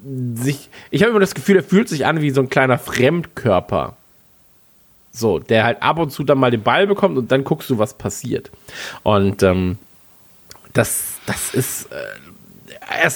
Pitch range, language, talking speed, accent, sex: 100-135 Hz, German, 170 wpm, German, male